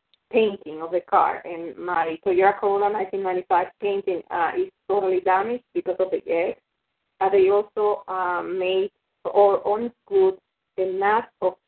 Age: 30-49